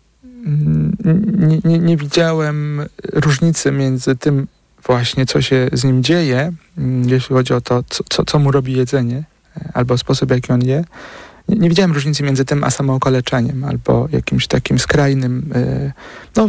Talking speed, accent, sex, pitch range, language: 145 wpm, native, male, 135-160 Hz, Polish